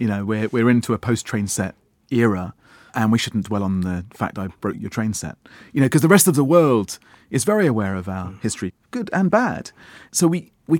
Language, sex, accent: English, male, British